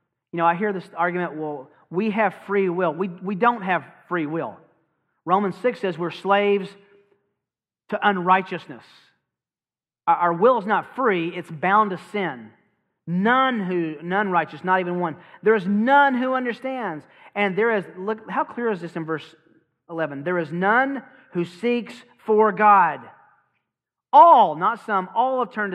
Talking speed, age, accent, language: 165 wpm, 40-59, American, English